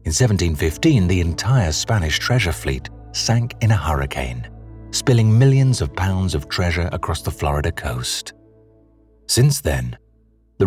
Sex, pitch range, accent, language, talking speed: male, 80-110 Hz, British, English, 135 wpm